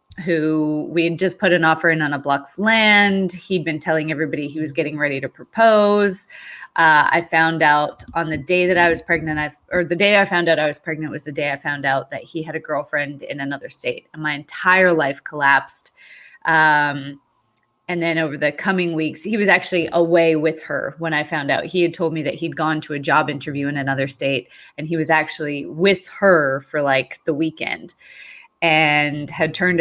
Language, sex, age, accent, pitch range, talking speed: English, female, 20-39, American, 150-170 Hz, 215 wpm